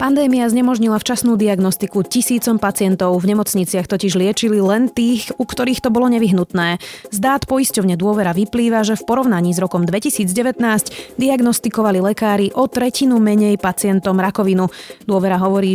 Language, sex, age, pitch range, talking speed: Slovak, female, 20-39, 185-240 Hz, 135 wpm